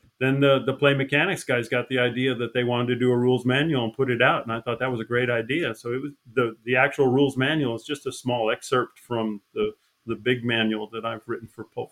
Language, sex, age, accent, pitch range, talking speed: English, male, 40-59, American, 125-160 Hz, 260 wpm